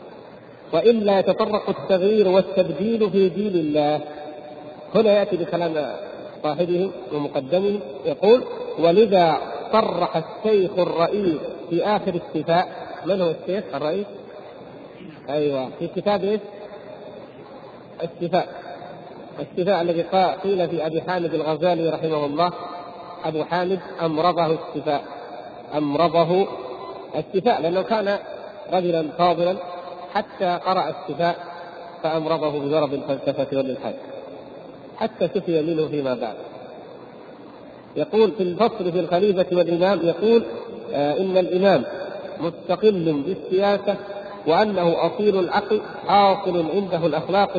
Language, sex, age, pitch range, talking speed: Arabic, male, 50-69, 165-200 Hz, 100 wpm